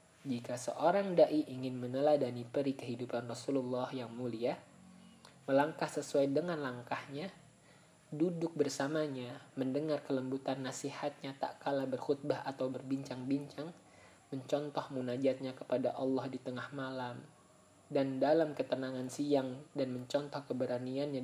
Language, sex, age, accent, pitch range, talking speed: Indonesian, male, 20-39, native, 125-150 Hz, 105 wpm